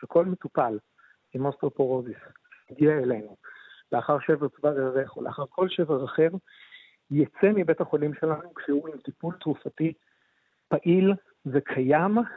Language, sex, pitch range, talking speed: Hebrew, male, 145-175 Hz, 120 wpm